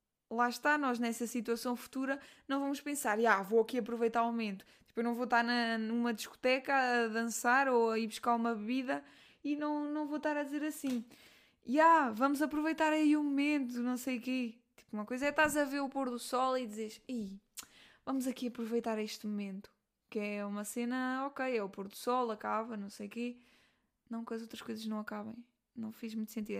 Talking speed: 215 wpm